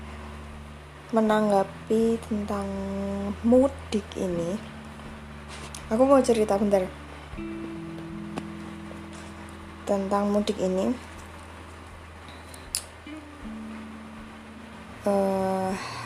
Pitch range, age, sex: 185-225 Hz, 20-39, female